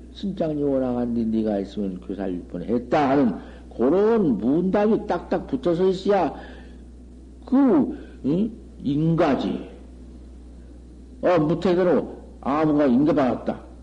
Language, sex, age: Korean, male, 60-79